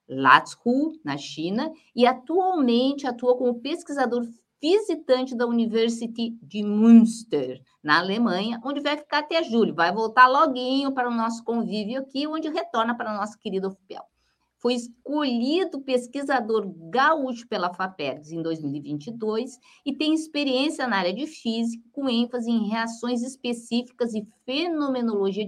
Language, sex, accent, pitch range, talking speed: Portuguese, female, Brazilian, 205-275 Hz, 135 wpm